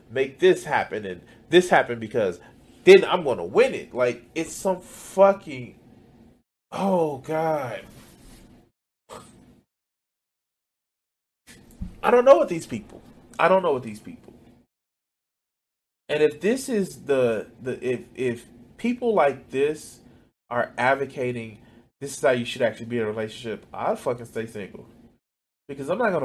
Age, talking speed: 20-39, 145 wpm